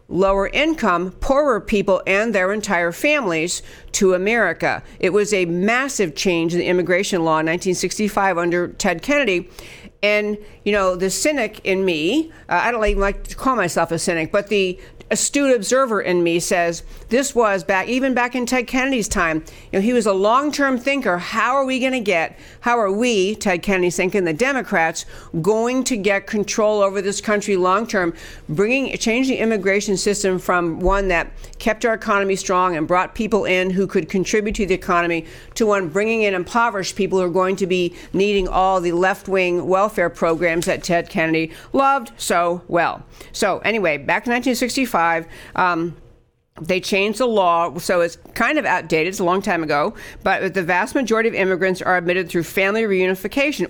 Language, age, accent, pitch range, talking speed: English, 60-79, American, 180-220 Hz, 180 wpm